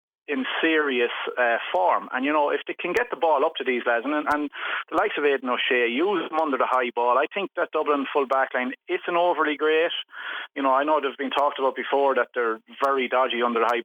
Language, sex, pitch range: English, male, 120-150 Hz